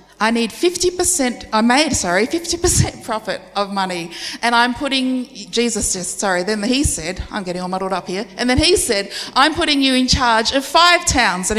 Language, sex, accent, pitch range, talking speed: English, female, Australian, 190-260 Hz, 195 wpm